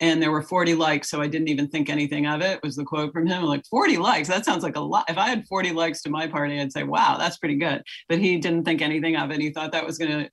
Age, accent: 40-59, American